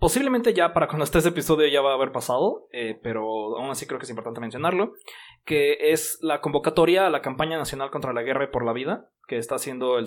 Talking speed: 240 wpm